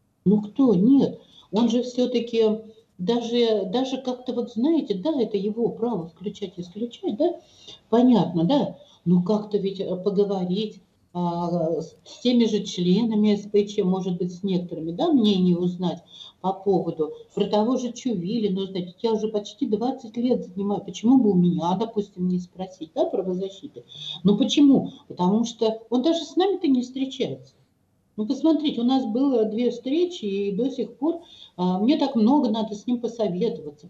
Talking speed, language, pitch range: 165 wpm, Russian, 185-245 Hz